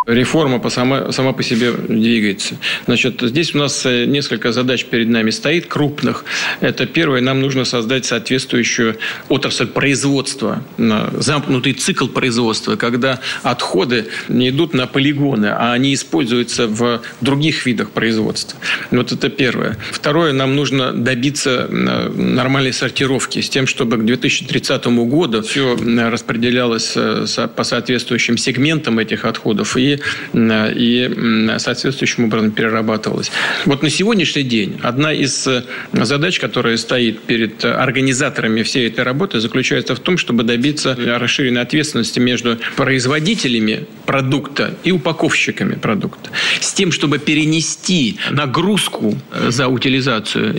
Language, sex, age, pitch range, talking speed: Russian, male, 40-59, 120-145 Hz, 120 wpm